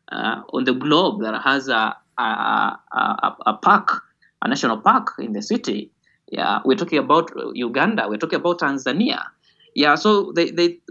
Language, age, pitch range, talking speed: English, 20-39, 130-185 Hz, 160 wpm